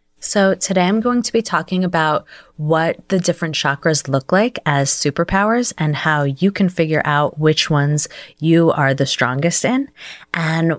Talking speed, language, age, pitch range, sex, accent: 165 wpm, English, 30-49, 140-170 Hz, female, American